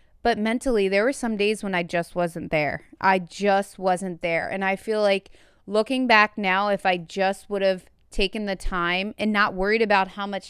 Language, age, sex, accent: English, 20-39, female, American